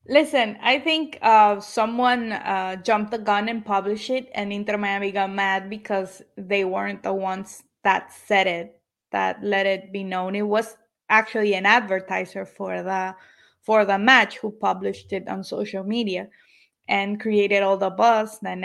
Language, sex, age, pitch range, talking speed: English, female, 20-39, 195-220 Hz, 165 wpm